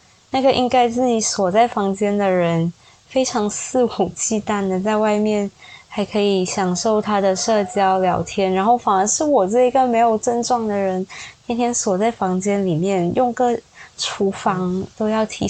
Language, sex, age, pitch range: Chinese, female, 20-39, 190-230 Hz